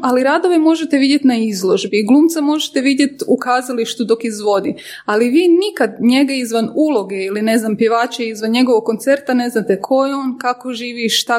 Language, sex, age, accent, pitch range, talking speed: Croatian, female, 20-39, native, 220-265 Hz, 180 wpm